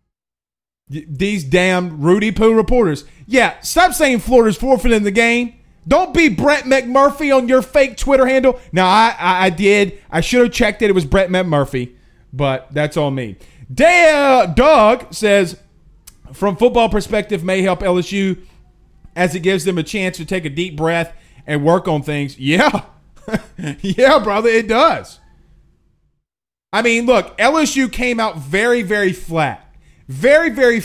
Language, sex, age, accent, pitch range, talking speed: English, male, 30-49, American, 175-255 Hz, 150 wpm